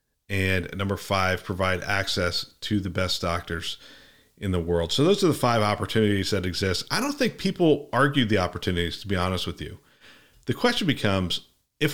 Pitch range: 95-120 Hz